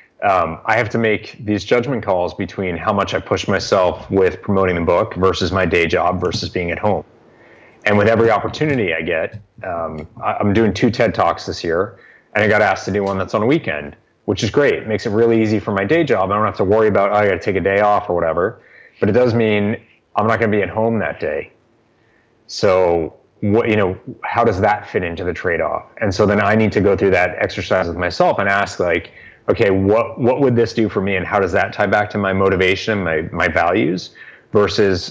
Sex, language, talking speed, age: male, English, 240 wpm, 30-49